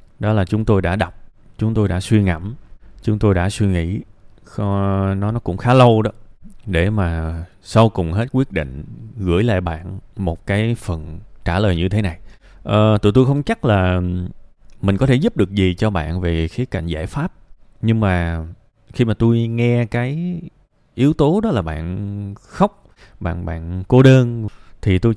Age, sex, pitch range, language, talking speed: 20-39, male, 90-115 Hz, Vietnamese, 185 wpm